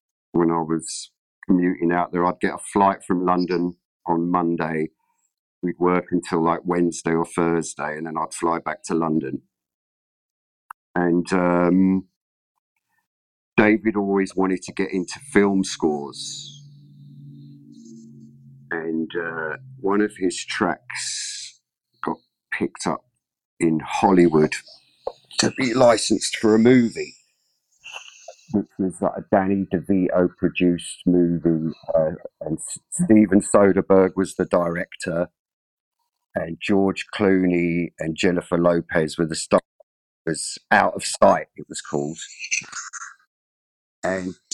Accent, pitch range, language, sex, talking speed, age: British, 80-95 Hz, English, male, 115 wpm, 50-69